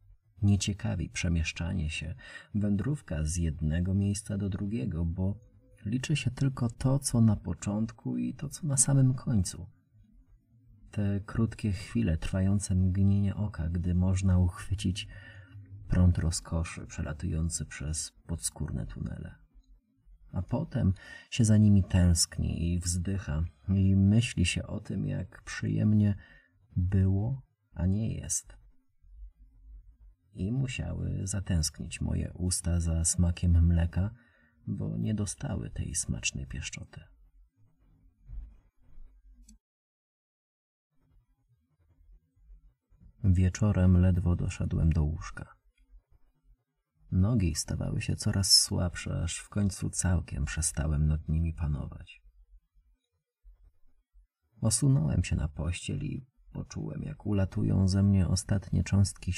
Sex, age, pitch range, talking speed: male, 30-49, 80-105 Hz, 100 wpm